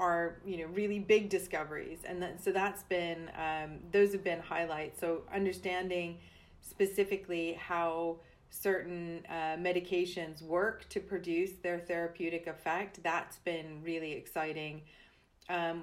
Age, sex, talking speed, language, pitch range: 30-49, female, 130 wpm, English, 160-180 Hz